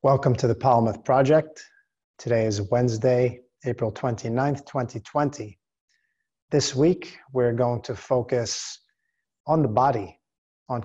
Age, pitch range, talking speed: 30-49, 110-130 Hz, 115 wpm